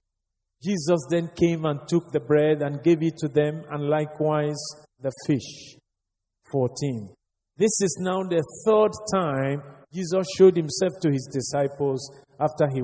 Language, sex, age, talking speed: English, male, 50-69, 145 wpm